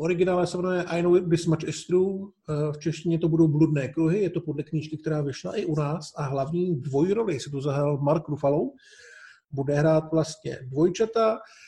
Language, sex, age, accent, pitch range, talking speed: Czech, male, 50-69, native, 150-165 Hz, 175 wpm